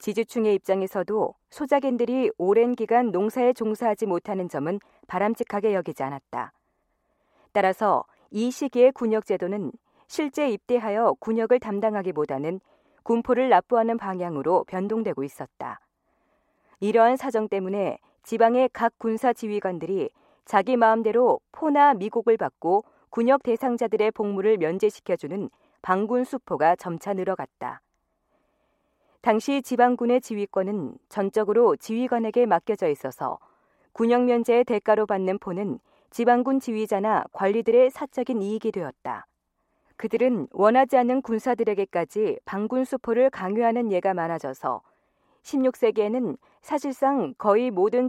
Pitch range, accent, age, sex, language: 205-255 Hz, native, 40-59, female, Korean